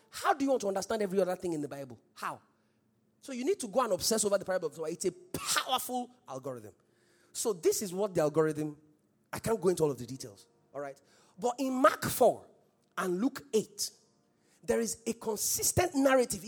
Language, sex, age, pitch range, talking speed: English, male, 30-49, 180-275 Hz, 210 wpm